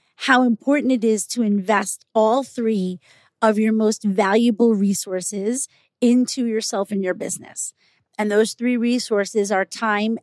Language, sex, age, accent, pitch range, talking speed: English, female, 30-49, American, 205-245 Hz, 140 wpm